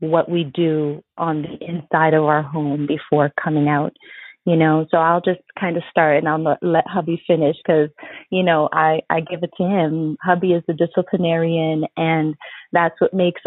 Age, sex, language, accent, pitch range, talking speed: 30-49, female, English, American, 160-190 Hz, 185 wpm